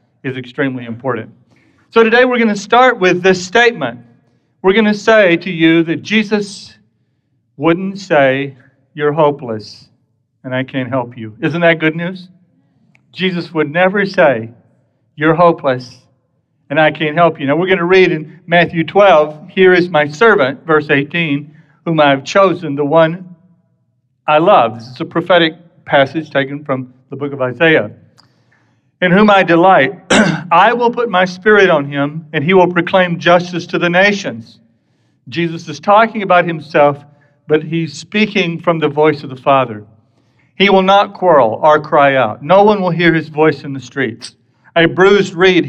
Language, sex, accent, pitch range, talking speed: English, male, American, 135-180 Hz, 170 wpm